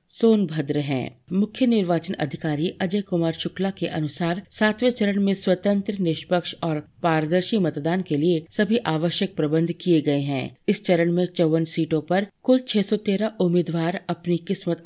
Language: Hindi